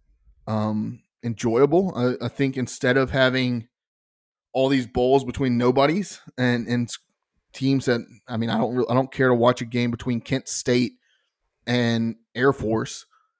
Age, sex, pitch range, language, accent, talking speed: 20-39, male, 120-140 Hz, English, American, 155 wpm